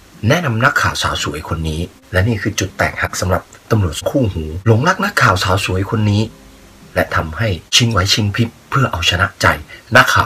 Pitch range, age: 90-115 Hz, 30-49